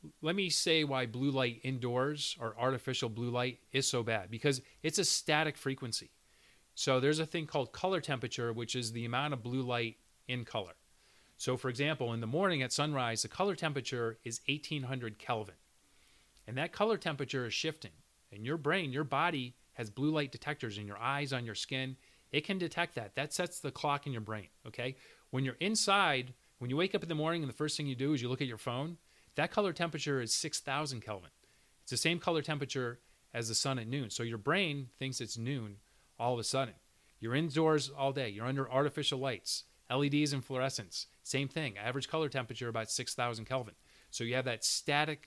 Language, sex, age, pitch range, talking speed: English, male, 30-49, 120-150 Hz, 205 wpm